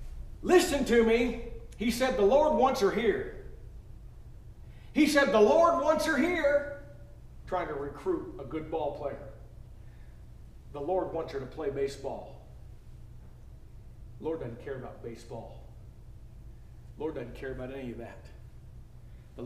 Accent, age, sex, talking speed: American, 40-59, male, 135 wpm